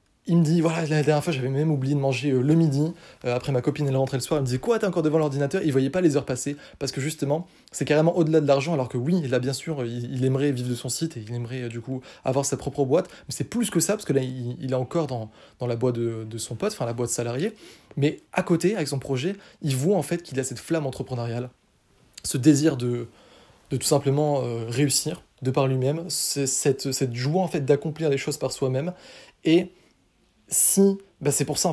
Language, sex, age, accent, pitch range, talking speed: French, male, 20-39, French, 130-155 Hz, 245 wpm